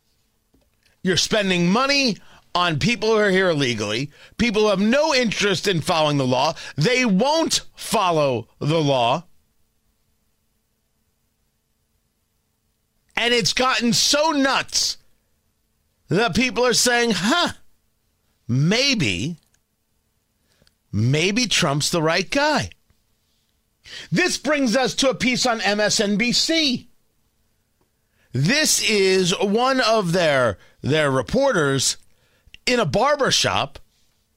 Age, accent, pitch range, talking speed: 40-59, American, 160-235 Hz, 100 wpm